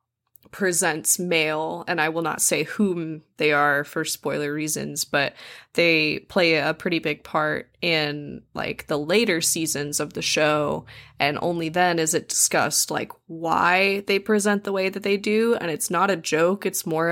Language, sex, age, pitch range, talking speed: English, female, 20-39, 155-190 Hz, 175 wpm